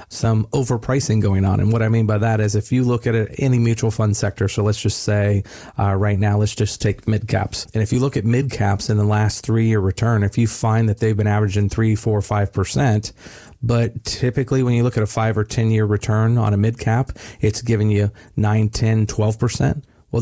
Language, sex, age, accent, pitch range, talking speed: English, male, 40-59, American, 105-120 Hz, 235 wpm